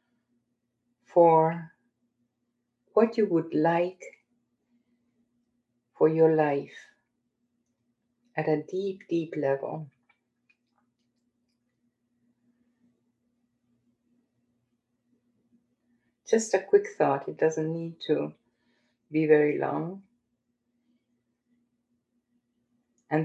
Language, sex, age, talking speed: English, female, 50-69, 65 wpm